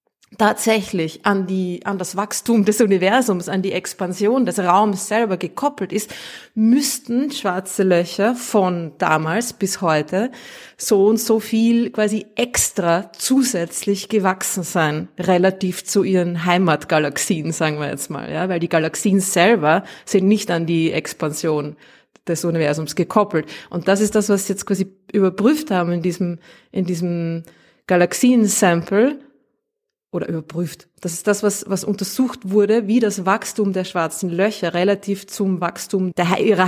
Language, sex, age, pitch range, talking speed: German, female, 30-49, 175-215 Hz, 145 wpm